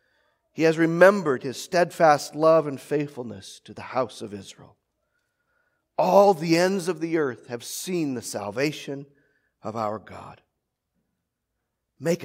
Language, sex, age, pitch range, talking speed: English, male, 40-59, 140-215 Hz, 130 wpm